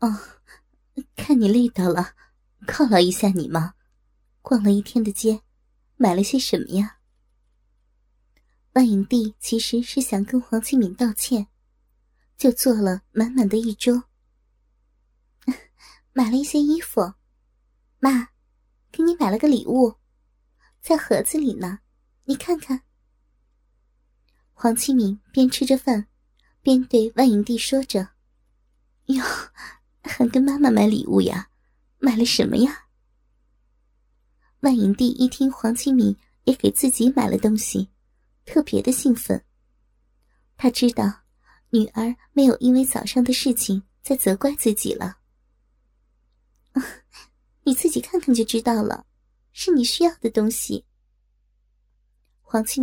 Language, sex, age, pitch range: Chinese, male, 20-39, 215-265 Hz